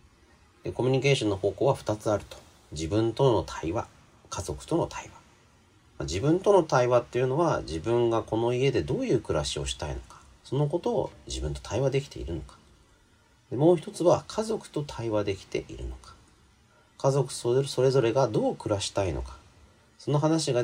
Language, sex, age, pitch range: Japanese, male, 40-59, 70-120 Hz